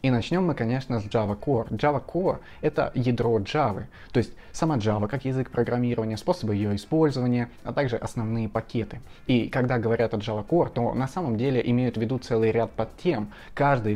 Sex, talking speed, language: male, 185 wpm, Russian